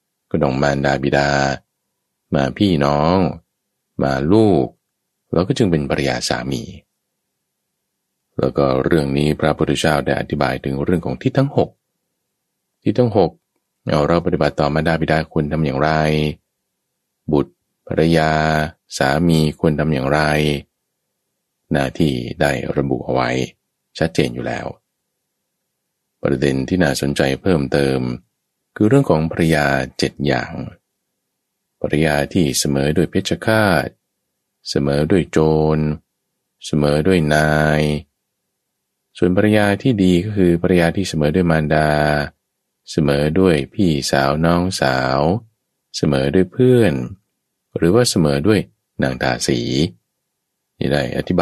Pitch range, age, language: 70-85 Hz, 20-39, Thai